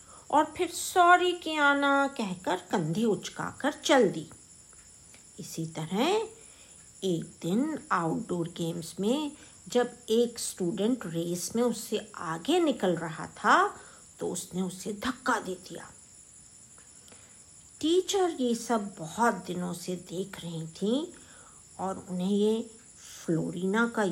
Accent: native